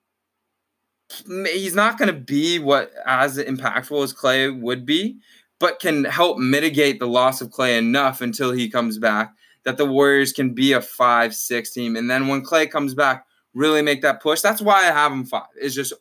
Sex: male